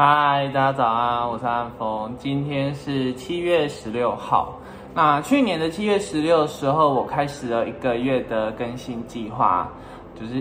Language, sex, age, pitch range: Chinese, male, 20-39, 125-160 Hz